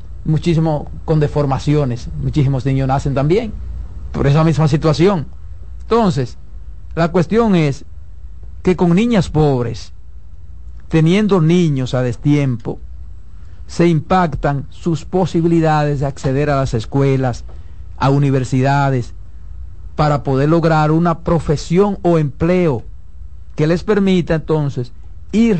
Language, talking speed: Spanish, 110 wpm